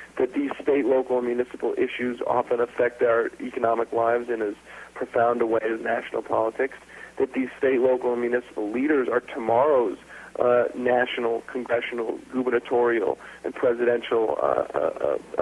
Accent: American